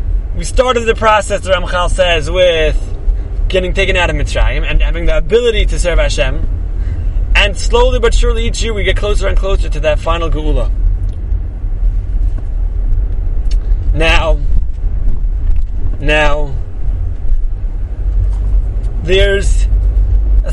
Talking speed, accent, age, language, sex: 115 wpm, American, 30-49, English, male